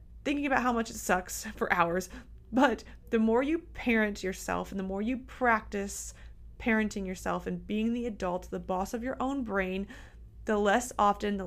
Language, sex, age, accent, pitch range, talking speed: English, female, 20-39, American, 185-230 Hz, 185 wpm